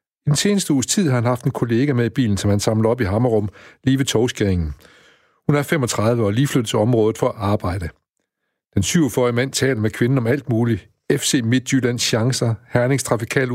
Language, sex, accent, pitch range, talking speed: Danish, male, native, 105-135 Hz, 210 wpm